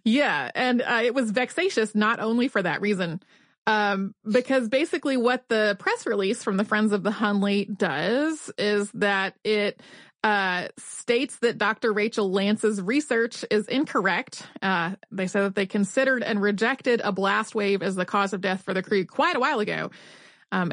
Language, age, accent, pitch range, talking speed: English, 30-49, American, 200-255 Hz, 175 wpm